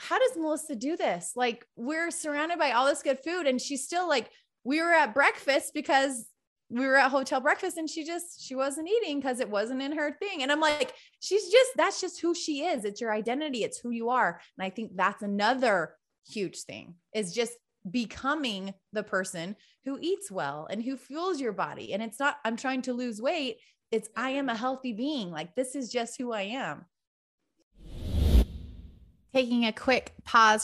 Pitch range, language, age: 195-270 Hz, English, 20-39